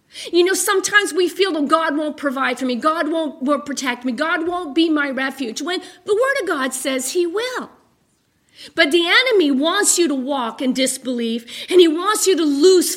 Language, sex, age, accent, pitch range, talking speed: English, female, 50-69, American, 245-330 Hz, 205 wpm